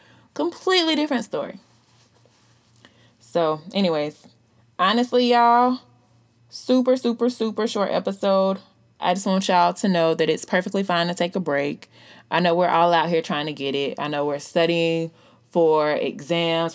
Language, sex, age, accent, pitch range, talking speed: English, female, 20-39, American, 120-185 Hz, 150 wpm